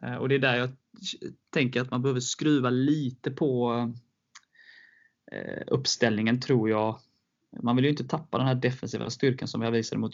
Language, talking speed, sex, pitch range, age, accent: Swedish, 165 wpm, male, 115-130 Hz, 20-39, native